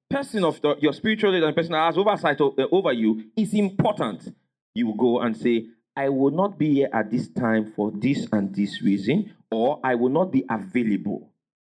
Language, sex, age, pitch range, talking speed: English, male, 40-59, 110-165 Hz, 200 wpm